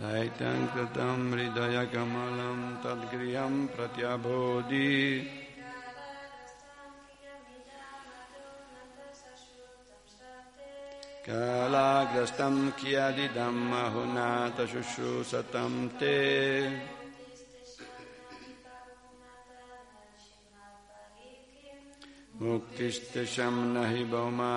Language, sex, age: Italian, male, 60-79